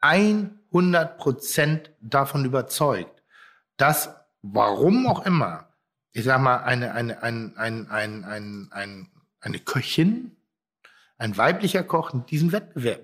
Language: German